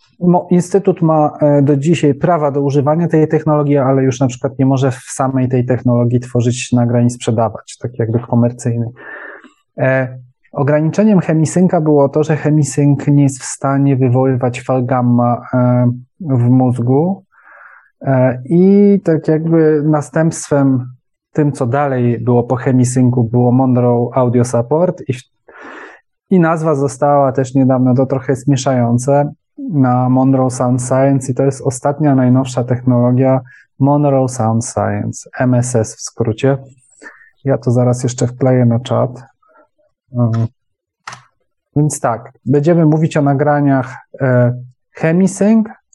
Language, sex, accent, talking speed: Polish, male, native, 125 wpm